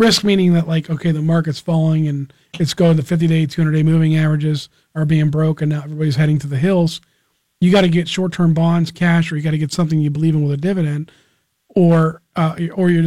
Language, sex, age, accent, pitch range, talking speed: English, male, 40-59, American, 150-175 Hz, 220 wpm